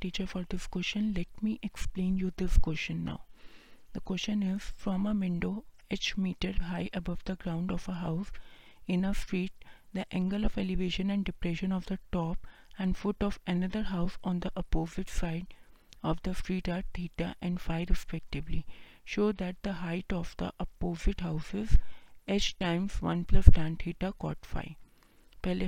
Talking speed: 180 wpm